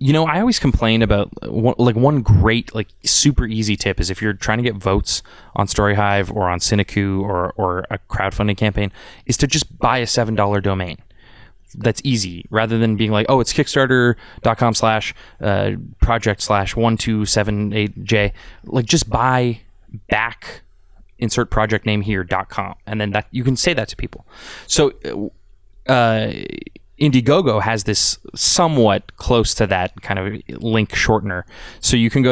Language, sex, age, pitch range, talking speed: English, male, 20-39, 100-120 Hz, 160 wpm